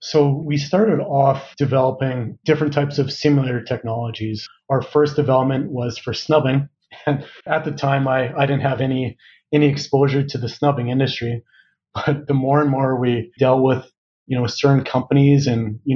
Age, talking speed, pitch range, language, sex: 30-49, 175 wpm, 120-140 Hz, English, male